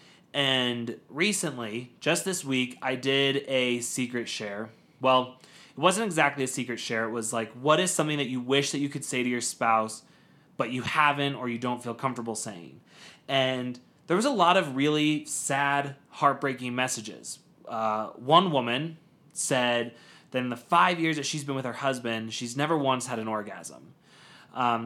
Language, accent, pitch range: English, American, 120-150 Hz